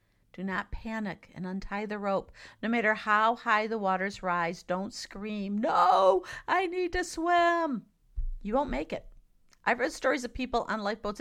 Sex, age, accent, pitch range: female, 50-69, American, 185-250 Hz